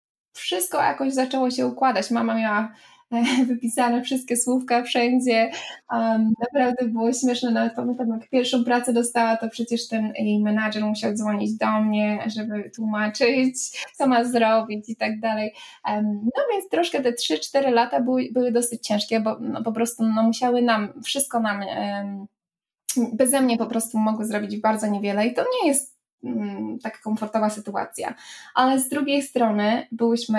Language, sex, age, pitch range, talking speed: Polish, female, 20-39, 215-245 Hz, 145 wpm